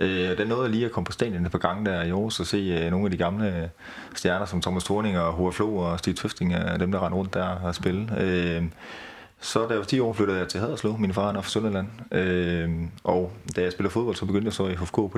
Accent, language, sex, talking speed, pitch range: native, Danish, male, 265 wpm, 90-100 Hz